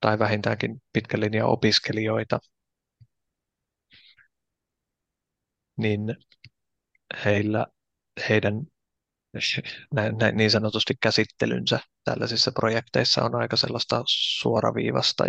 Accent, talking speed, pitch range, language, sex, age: native, 65 wpm, 105-115 Hz, Finnish, male, 20-39